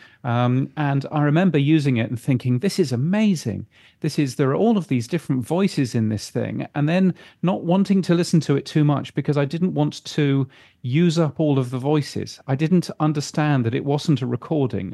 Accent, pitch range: British, 125-150 Hz